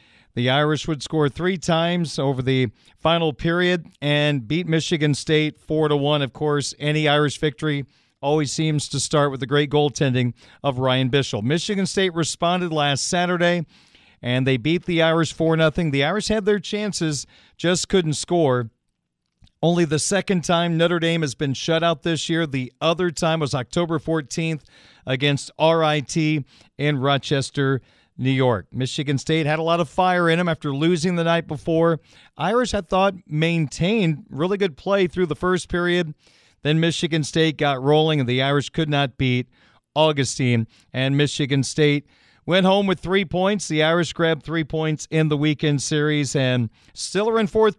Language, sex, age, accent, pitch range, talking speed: English, male, 40-59, American, 140-170 Hz, 170 wpm